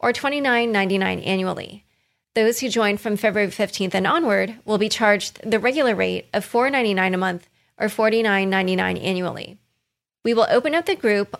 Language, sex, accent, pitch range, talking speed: English, female, American, 195-245 Hz, 170 wpm